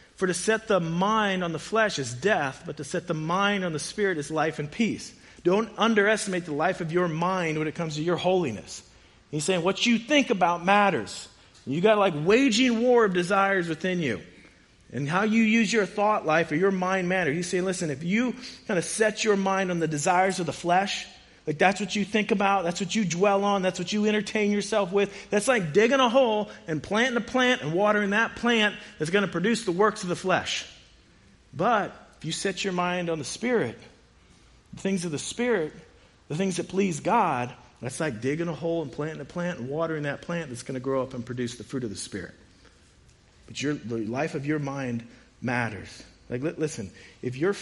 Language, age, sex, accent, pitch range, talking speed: English, 40-59, male, American, 135-200 Hz, 220 wpm